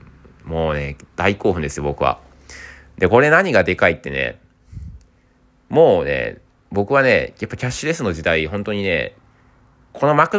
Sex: male